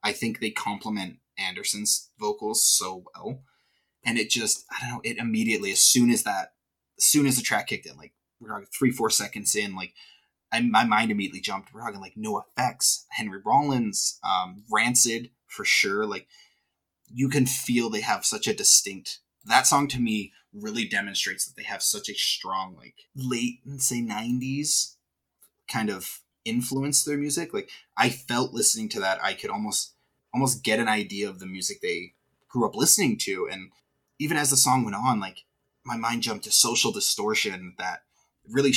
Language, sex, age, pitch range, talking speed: English, male, 20-39, 105-135 Hz, 185 wpm